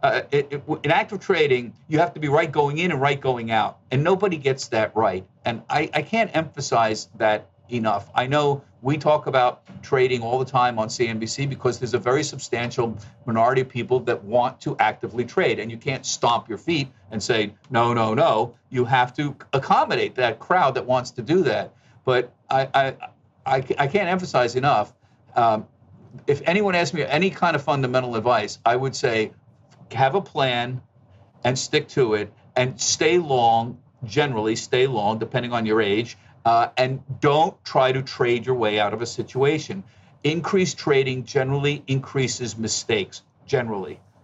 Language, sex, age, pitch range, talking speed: English, male, 50-69, 115-145 Hz, 180 wpm